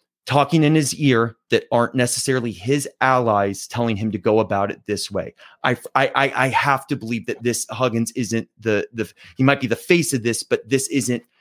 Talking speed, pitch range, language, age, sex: 205 wpm, 110-130 Hz, English, 30-49, male